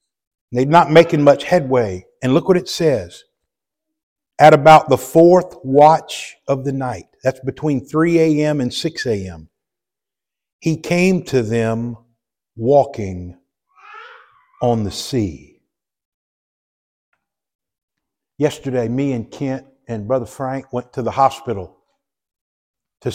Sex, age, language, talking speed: male, 50-69, English, 115 wpm